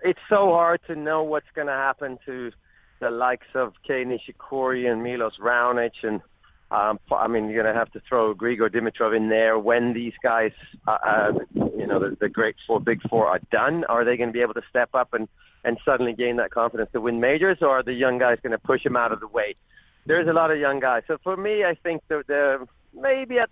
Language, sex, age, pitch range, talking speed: English, male, 40-59, 115-145 Hz, 235 wpm